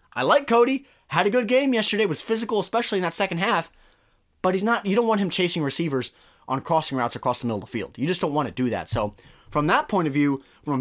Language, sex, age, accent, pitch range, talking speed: English, male, 20-39, American, 145-180 Hz, 260 wpm